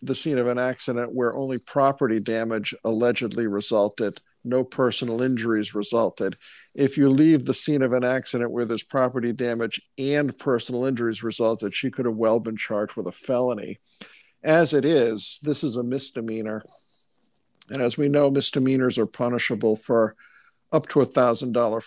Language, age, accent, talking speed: English, 50-69, American, 165 wpm